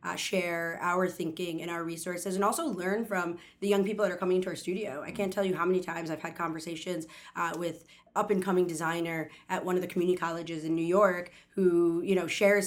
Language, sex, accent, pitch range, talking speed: English, female, American, 165-185 Hz, 230 wpm